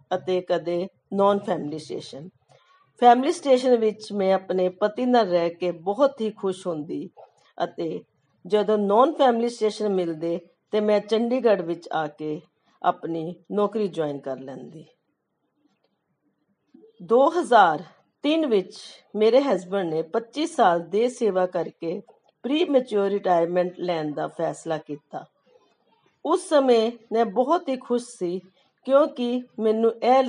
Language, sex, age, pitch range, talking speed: Punjabi, female, 40-59, 175-235 Hz, 110 wpm